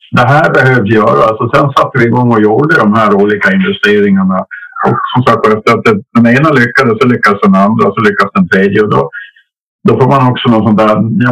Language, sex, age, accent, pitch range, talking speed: Swedish, male, 50-69, Norwegian, 110-160 Hz, 230 wpm